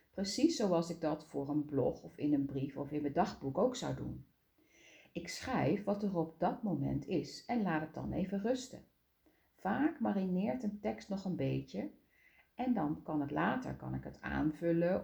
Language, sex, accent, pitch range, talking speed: Dutch, female, Dutch, 145-225 Hz, 185 wpm